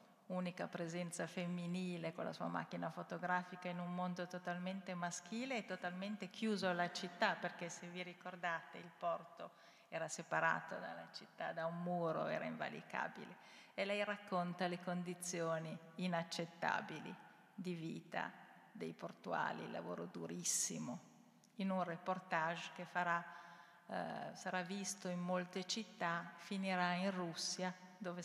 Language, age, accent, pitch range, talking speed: Italian, 50-69, native, 170-195 Hz, 130 wpm